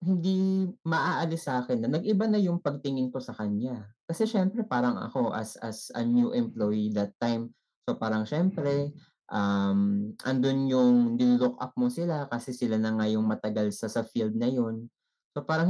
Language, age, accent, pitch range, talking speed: Filipino, 20-39, native, 120-185 Hz, 175 wpm